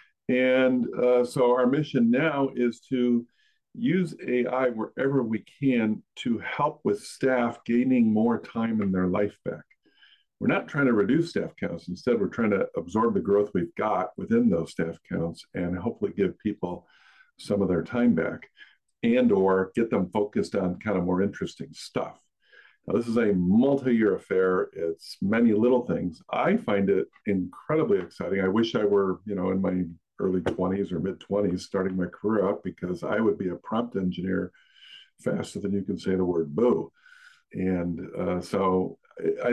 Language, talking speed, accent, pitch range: English, 175 wpm, American, 100-145 Hz